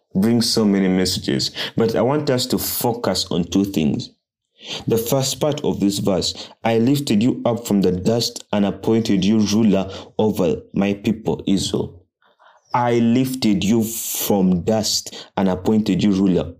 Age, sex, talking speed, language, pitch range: 30-49, male, 155 wpm, English, 100-130 Hz